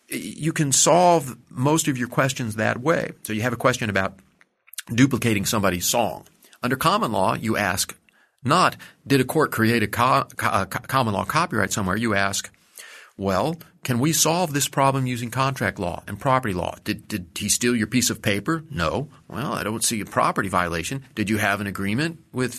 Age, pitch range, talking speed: 40-59, 105-145 Hz, 185 wpm